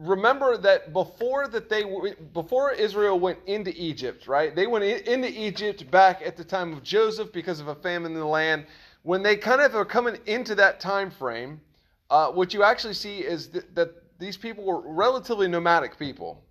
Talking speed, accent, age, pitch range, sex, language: 195 wpm, American, 30-49, 155-205 Hz, male, English